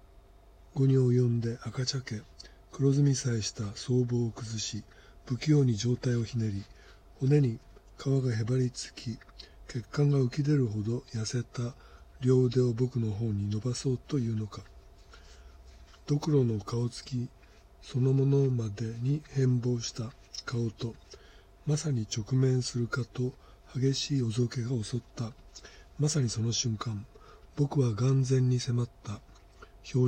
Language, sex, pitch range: Japanese, male, 105-130 Hz